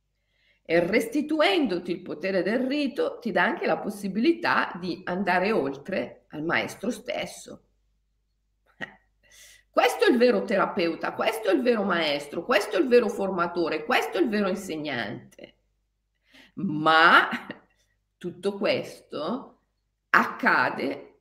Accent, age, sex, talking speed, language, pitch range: native, 40-59, female, 115 wpm, Italian, 175-250 Hz